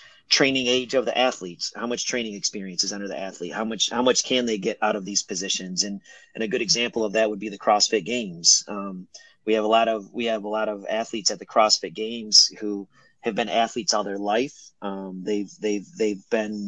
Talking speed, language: 230 wpm, English